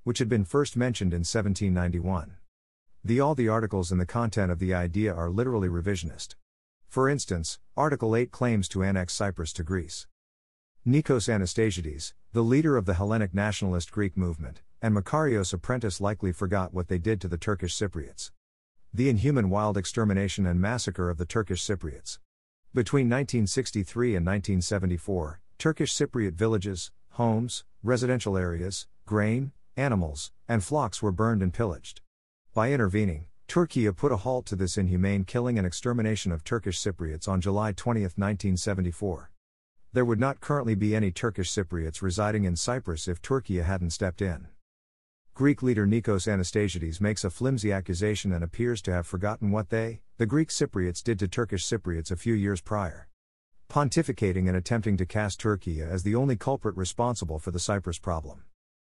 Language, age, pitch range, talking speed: English, 50-69, 90-115 Hz, 160 wpm